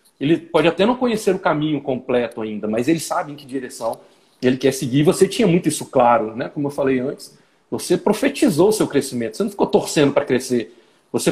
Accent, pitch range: Brazilian, 130-185 Hz